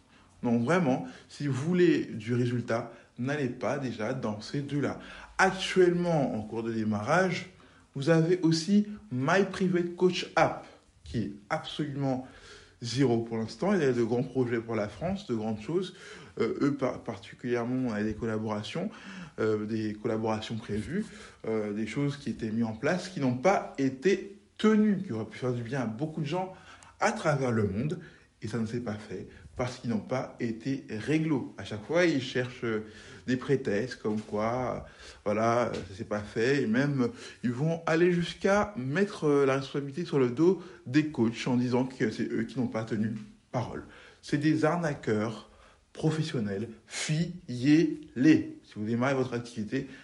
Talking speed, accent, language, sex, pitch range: 165 wpm, French, French, male, 115-160 Hz